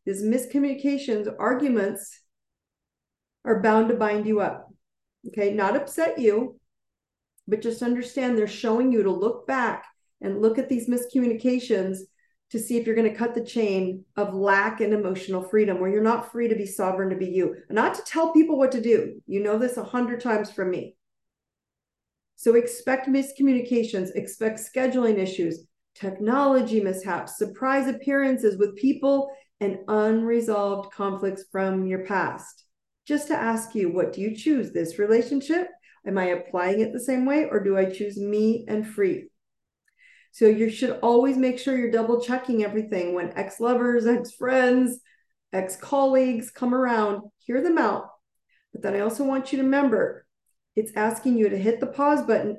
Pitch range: 200-255 Hz